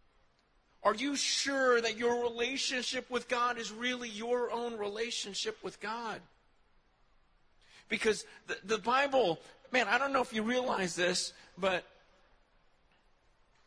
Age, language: 50-69, English